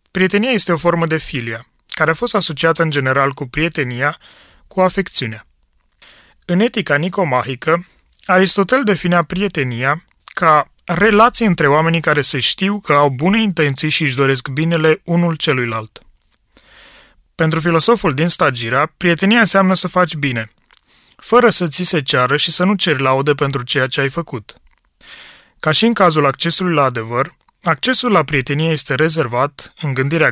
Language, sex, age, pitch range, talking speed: Romanian, male, 30-49, 140-185 Hz, 150 wpm